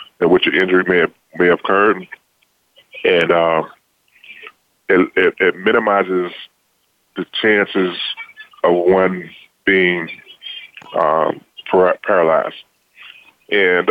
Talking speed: 85 wpm